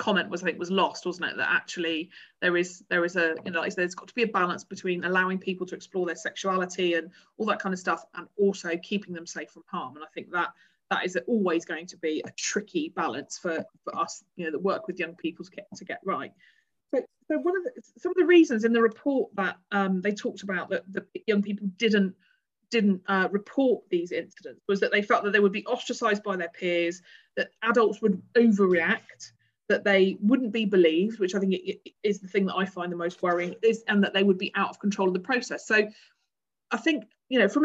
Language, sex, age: English, female, 30-49